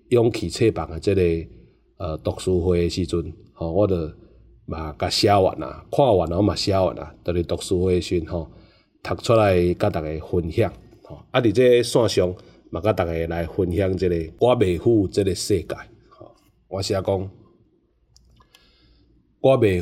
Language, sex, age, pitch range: Chinese, male, 30-49, 85-110 Hz